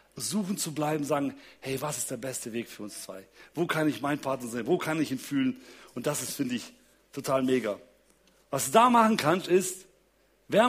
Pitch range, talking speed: 165-240 Hz, 215 wpm